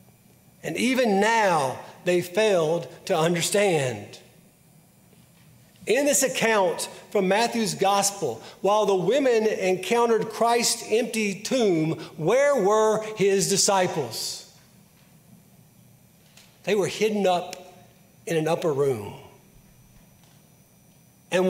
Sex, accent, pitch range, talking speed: male, American, 180-225 Hz, 90 wpm